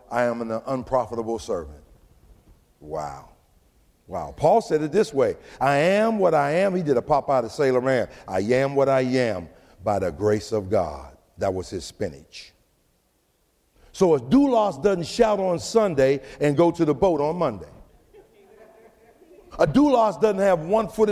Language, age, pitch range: English, 50-69, 130-210 Hz